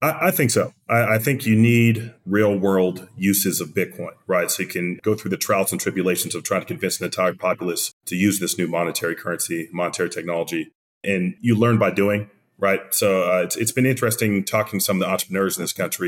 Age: 30-49